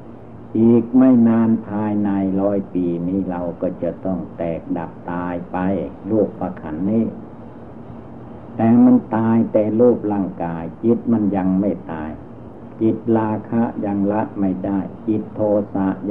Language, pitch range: Thai, 95-115 Hz